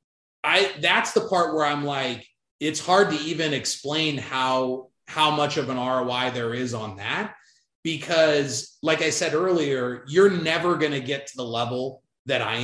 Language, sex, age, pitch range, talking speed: English, male, 30-49, 130-165 Hz, 175 wpm